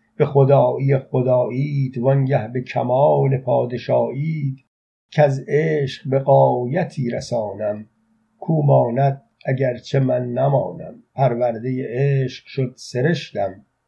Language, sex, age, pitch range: Persian, male, 50-69, 125-145 Hz